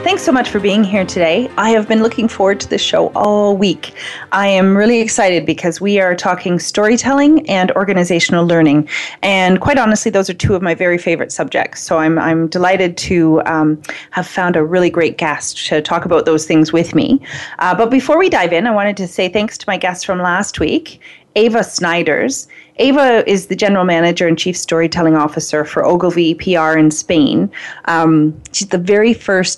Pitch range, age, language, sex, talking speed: 160-205 Hz, 30-49, English, female, 195 wpm